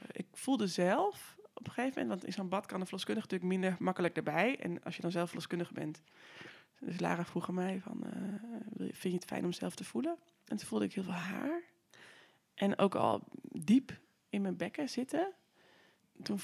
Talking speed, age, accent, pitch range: 205 wpm, 20-39, Dutch, 170-225 Hz